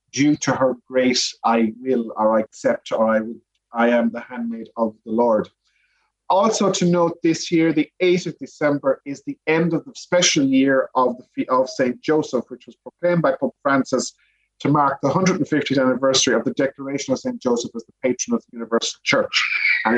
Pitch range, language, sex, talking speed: 130-170 Hz, English, male, 190 wpm